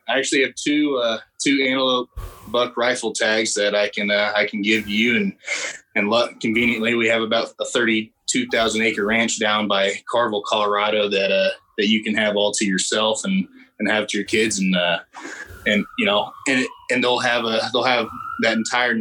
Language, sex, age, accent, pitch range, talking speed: English, male, 20-39, American, 100-120 Hz, 200 wpm